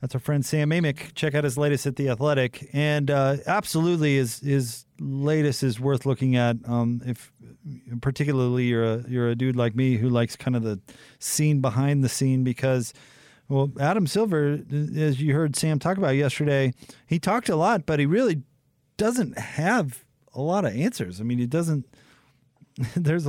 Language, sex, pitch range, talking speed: English, male, 120-150 Hz, 180 wpm